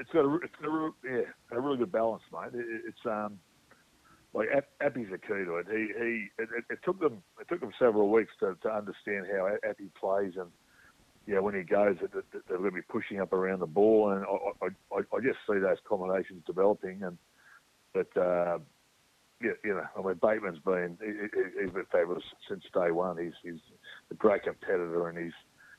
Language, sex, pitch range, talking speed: English, male, 100-120 Hz, 195 wpm